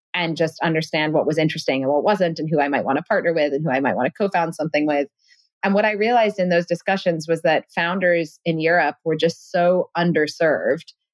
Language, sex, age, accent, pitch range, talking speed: English, female, 30-49, American, 155-185 Hz, 225 wpm